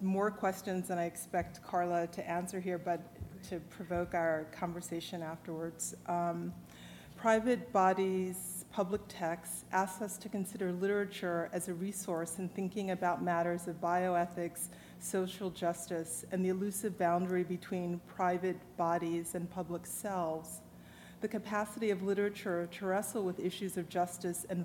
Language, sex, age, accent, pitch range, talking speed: English, female, 40-59, American, 175-190 Hz, 140 wpm